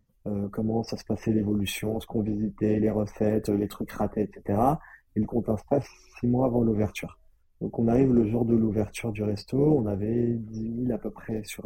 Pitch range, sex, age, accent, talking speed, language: 105-120 Hz, male, 20-39, French, 200 wpm, French